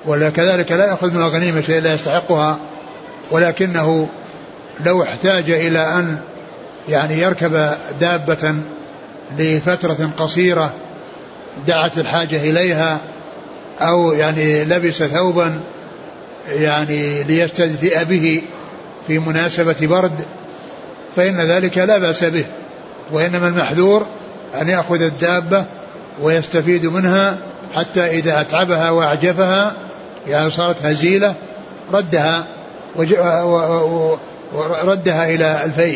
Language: Arabic